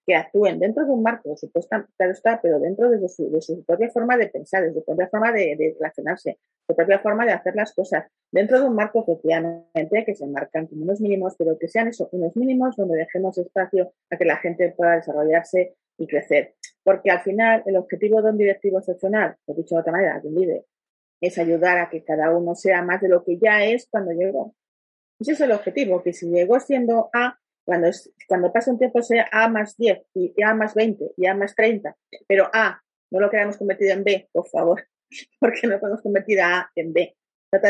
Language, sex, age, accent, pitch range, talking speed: Spanish, female, 40-59, Spanish, 175-220 Hz, 225 wpm